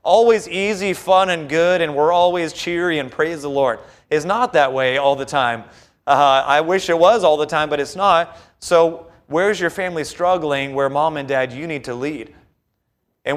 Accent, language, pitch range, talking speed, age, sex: American, English, 135-165 Hz, 200 wpm, 30-49, male